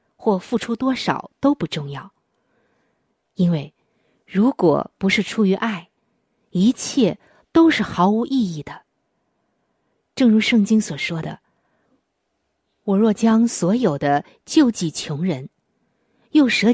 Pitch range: 170-240 Hz